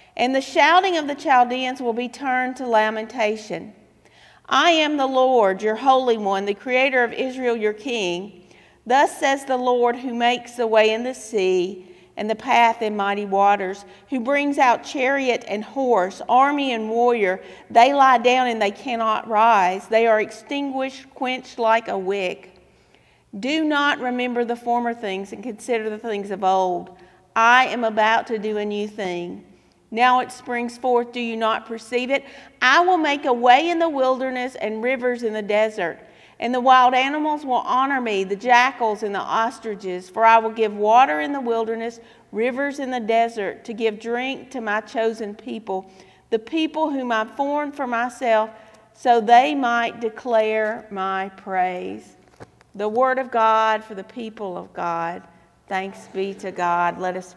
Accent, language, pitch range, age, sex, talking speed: American, English, 210-255 Hz, 50-69, female, 175 wpm